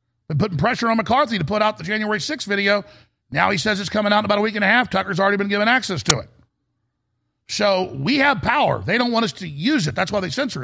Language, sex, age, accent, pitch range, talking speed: English, male, 50-69, American, 140-210 Hz, 265 wpm